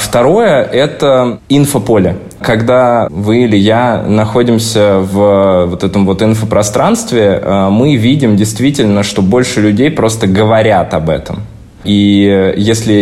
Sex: male